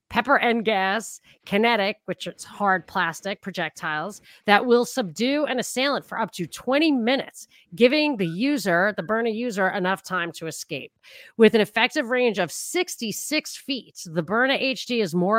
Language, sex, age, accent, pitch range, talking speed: English, female, 30-49, American, 175-235 Hz, 160 wpm